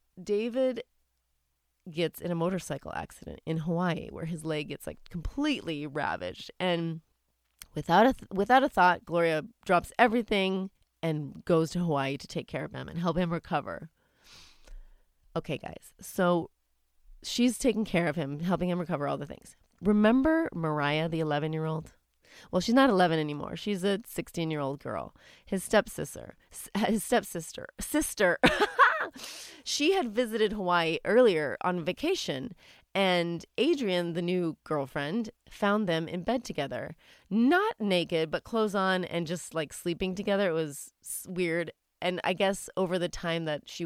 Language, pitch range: English, 160-205 Hz